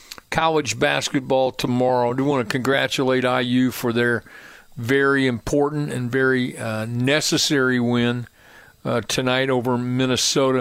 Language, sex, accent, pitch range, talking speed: English, male, American, 125-140 Hz, 125 wpm